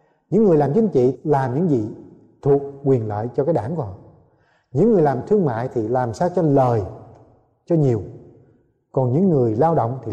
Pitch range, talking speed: 125-190 Hz, 200 wpm